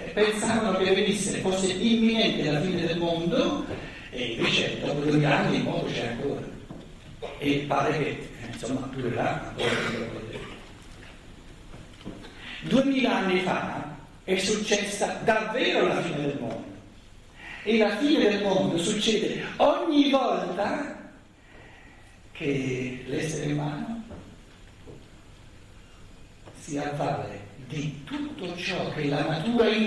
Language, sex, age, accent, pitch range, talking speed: Italian, male, 60-79, native, 145-240 Hz, 115 wpm